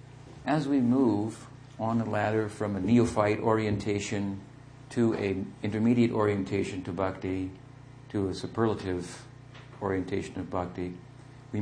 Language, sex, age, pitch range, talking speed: English, male, 50-69, 95-130 Hz, 120 wpm